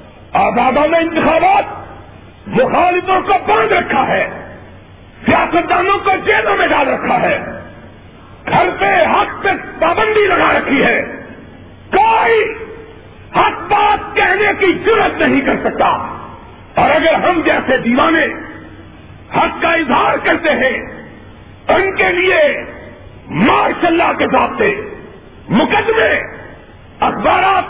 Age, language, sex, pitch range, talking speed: 50-69, Urdu, male, 300-390 Hz, 115 wpm